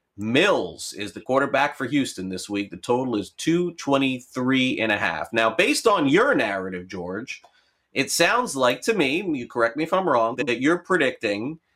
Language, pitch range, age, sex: English, 105-145 Hz, 30-49, male